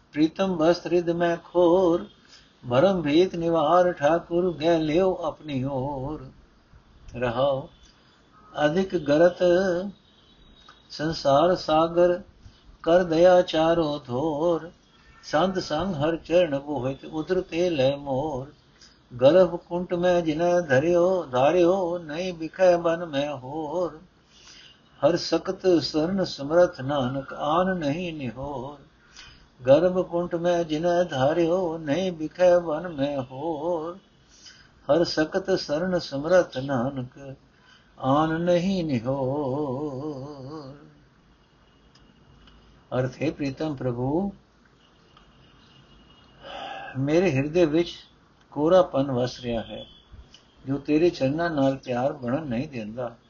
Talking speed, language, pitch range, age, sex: 90 wpm, Punjabi, 140-175 Hz, 60-79, male